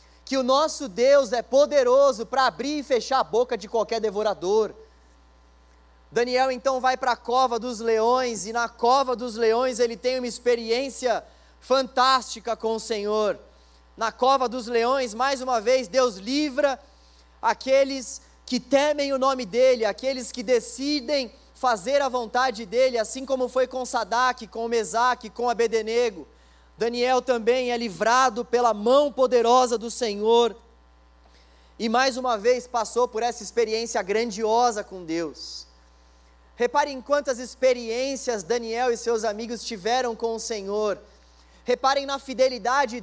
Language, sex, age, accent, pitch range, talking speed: Portuguese, male, 20-39, Brazilian, 225-260 Hz, 140 wpm